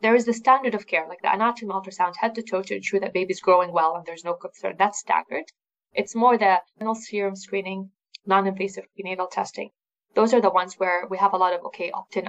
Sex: female